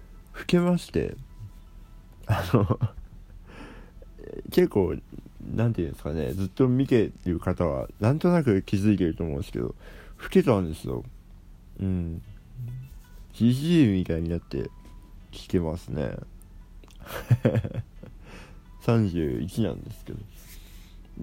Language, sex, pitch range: Japanese, male, 90-135 Hz